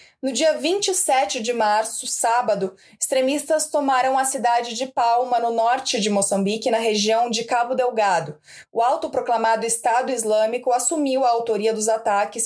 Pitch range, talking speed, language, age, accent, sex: 230-280 Hz, 145 wpm, Portuguese, 20-39, Brazilian, female